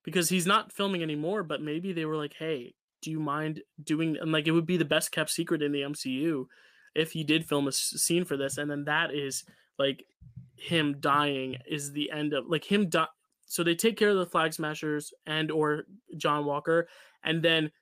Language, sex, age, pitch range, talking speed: English, male, 20-39, 145-170 Hz, 210 wpm